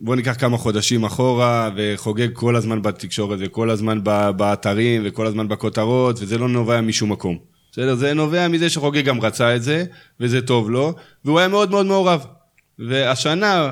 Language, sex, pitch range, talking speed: Hebrew, male, 105-130 Hz, 165 wpm